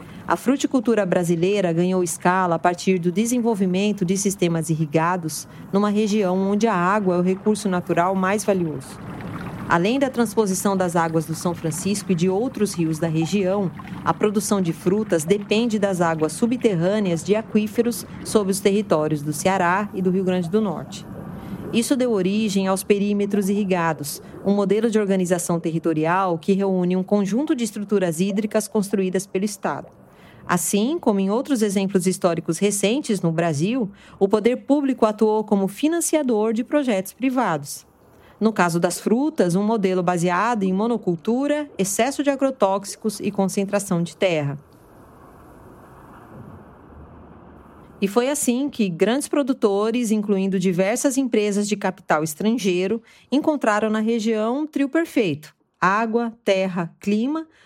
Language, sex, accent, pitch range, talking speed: Portuguese, female, Brazilian, 180-225 Hz, 140 wpm